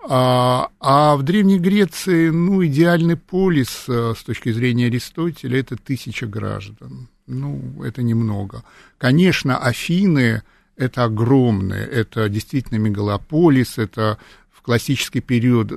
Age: 50-69